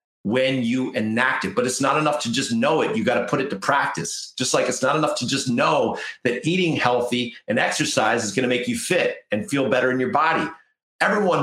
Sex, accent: male, American